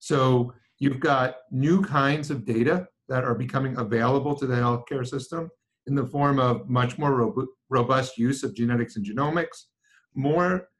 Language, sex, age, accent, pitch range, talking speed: English, male, 50-69, American, 135-180 Hz, 155 wpm